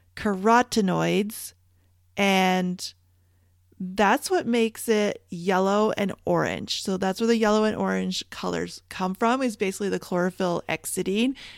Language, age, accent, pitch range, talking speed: English, 30-49, American, 160-220 Hz, 125 wpm